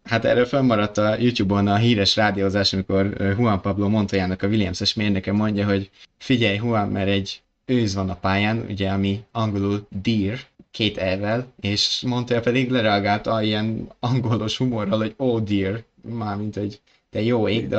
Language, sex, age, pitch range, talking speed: Hungarian, male, 20-39, 100-120 Hz, 160 wpm